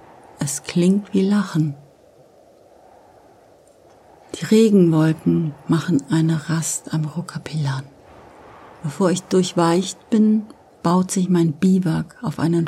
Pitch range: 150-180 Hz